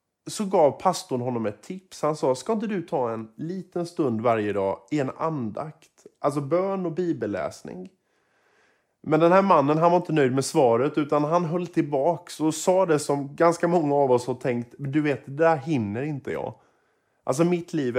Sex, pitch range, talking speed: male, 125-175 Hz, 195 wpm